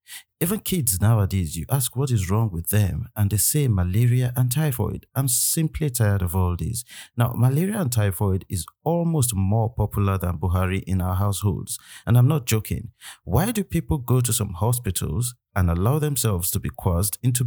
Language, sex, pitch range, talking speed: English, male, 95-125 Hz, 180 wpm